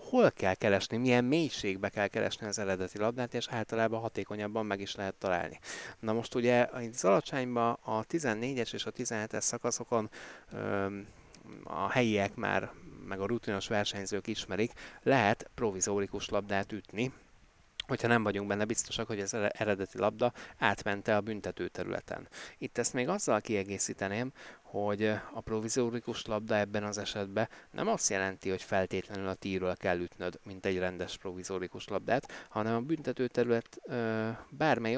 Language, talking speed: Hungarian, 145 wpm